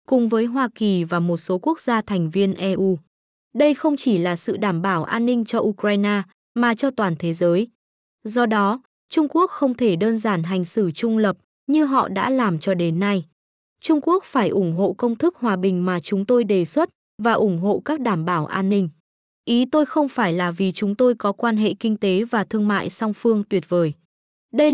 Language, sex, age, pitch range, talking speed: Vietnamese, female, 20-39, 190-240 Hz, 220 wpm